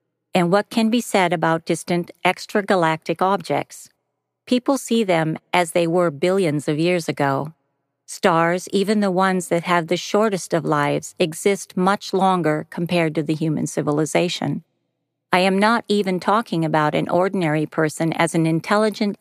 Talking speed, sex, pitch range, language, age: 155 wpm, female, 160-195 Hz, English, 50-69